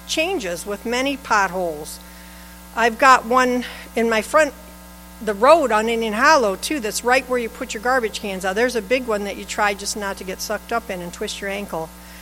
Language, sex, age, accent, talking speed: English, female, 50-69, American, 210 wpm